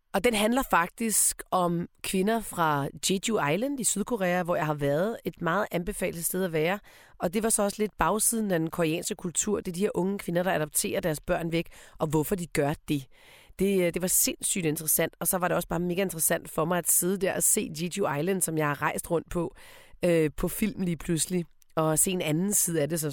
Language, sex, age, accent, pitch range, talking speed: Danish, female, 30-49, native, 160-210 Hz, 230 wpm